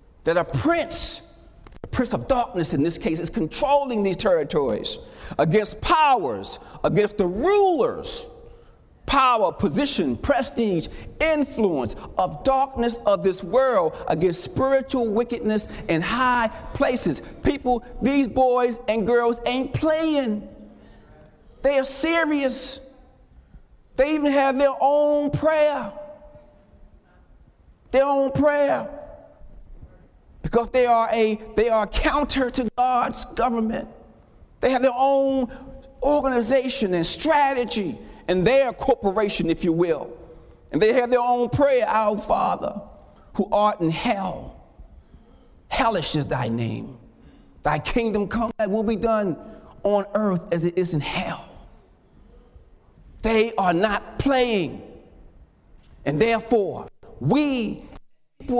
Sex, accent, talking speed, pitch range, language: male, American, 120 wpm, 210-270 Hz, English